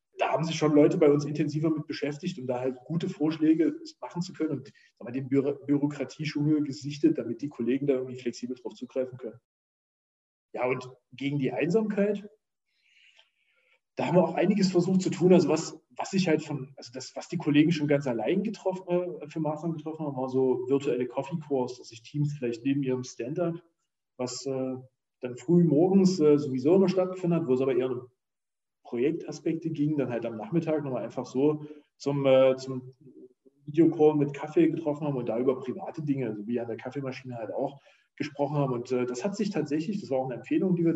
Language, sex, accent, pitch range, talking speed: German, male, German, 130-165 Hz, 200 wpm